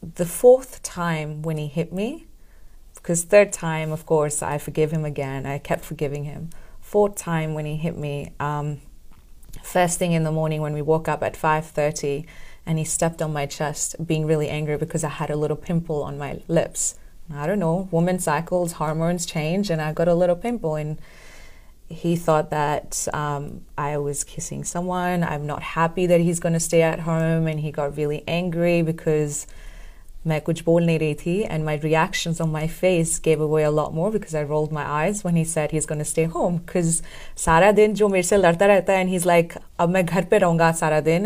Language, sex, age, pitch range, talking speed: Hindi, female, 30-49, 155-175 Hz, 205 wpm